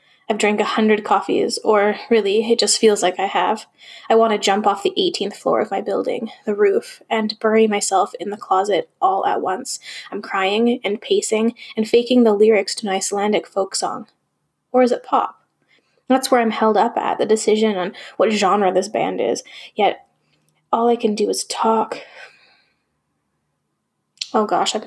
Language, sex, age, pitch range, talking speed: English, female, 10-29, 200-255 Hz, 180 wpm